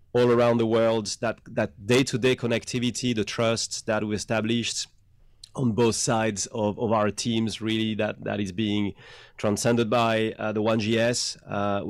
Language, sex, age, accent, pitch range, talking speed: English, male, 30-49, French, 105-115 Hz, 160 wpm